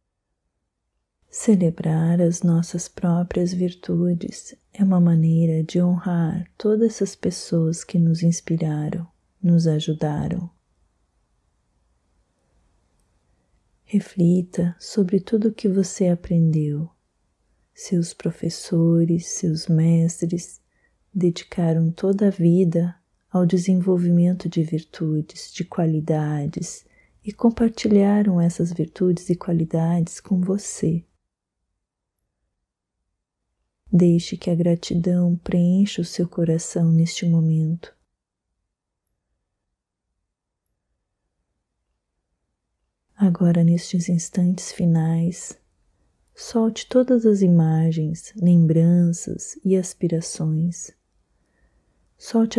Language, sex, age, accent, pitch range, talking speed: Portuguese, female, 30-49, Brazilian, 165-190 Hz, 80 wpm